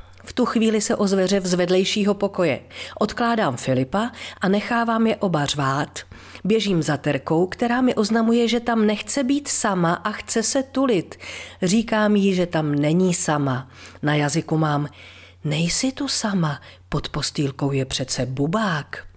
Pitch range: 150-215 Hz